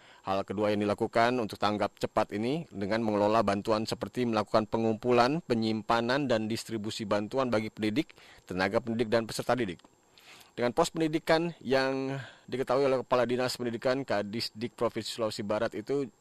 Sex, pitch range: male, 110-120 Hz